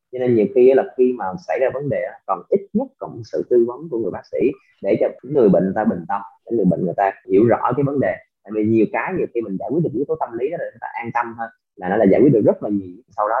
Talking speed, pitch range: 315 wpm, 100-155 Hz